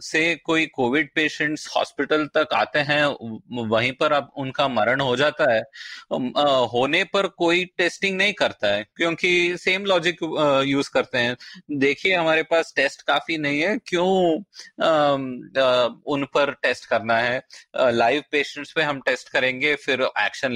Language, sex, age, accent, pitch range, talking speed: Hindi, male, 30-49, native, 140-180 Hz, 160 wpm